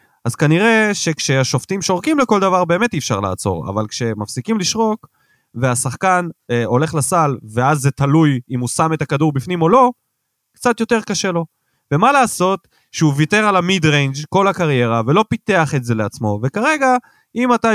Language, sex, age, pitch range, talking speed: Hebrew, male, 20-39, 125-185 Hz, 165 wpm